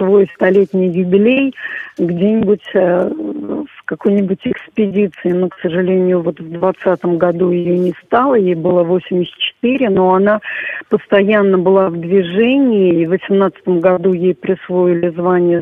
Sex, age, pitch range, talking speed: female, 50-69, 175-210 Hz, 120 wpm